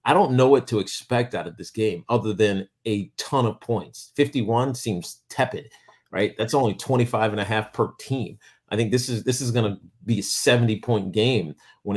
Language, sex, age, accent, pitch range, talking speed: English, male, 40-59, American, 105-140 Hz, 195 wpm